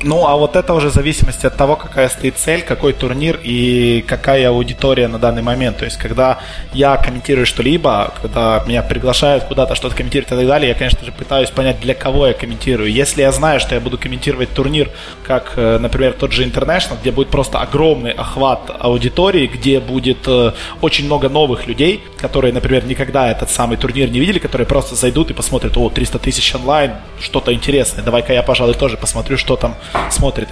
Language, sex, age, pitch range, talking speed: Russian, male, 20-39, 125-150 Hz, 185 wpm